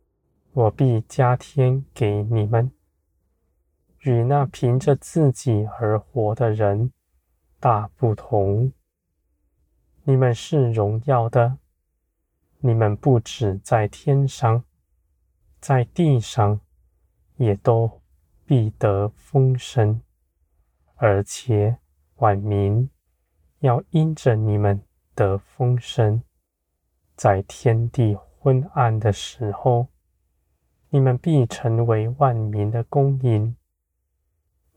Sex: male